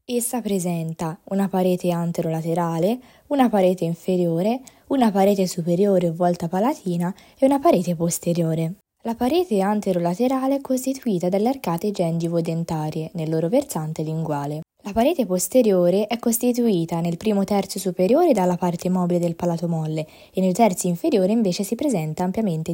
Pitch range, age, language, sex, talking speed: 165-210 Hz, 20-39, Italian, female, 135 wpm